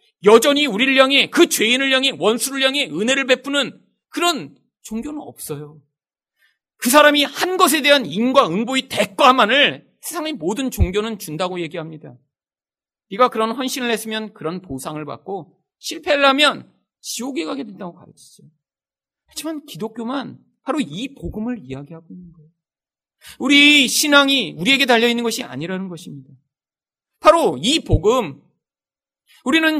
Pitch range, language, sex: 180-285 Hz, Korean, male